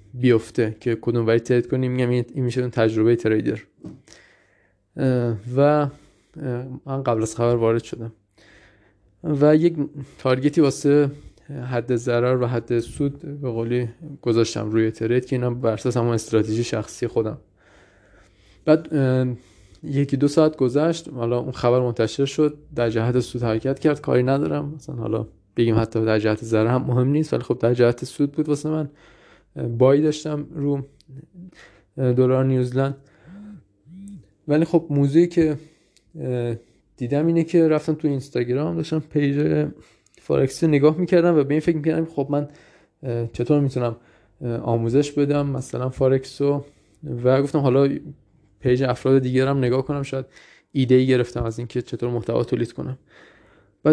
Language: Persian